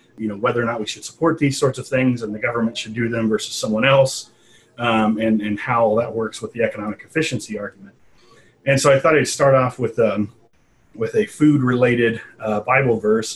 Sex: male